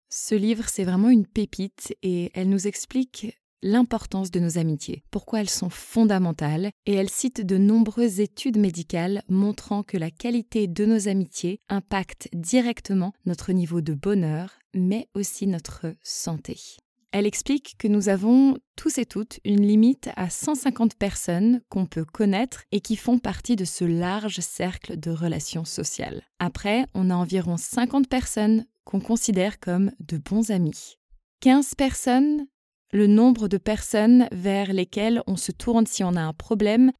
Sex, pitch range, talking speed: female, 180-230 Hz, 155 wpm